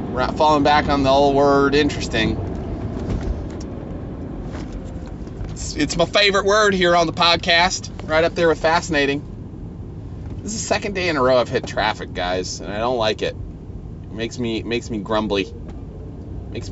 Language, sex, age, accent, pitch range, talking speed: English, male, 30-49, American, 90-145 Hz, 175 wpm